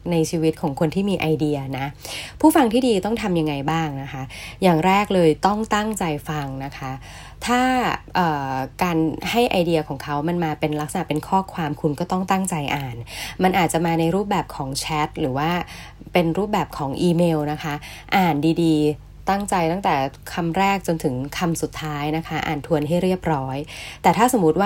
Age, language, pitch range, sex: 20-39, Thai, 150-185 Hz, female